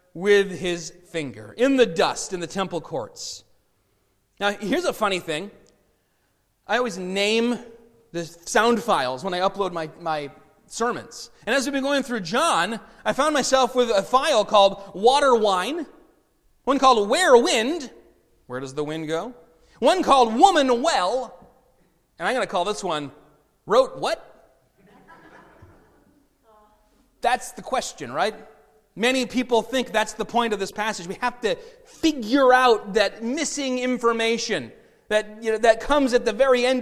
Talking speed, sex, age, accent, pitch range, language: 155 wpm, male, 30-49, American, 200-255 Hz, English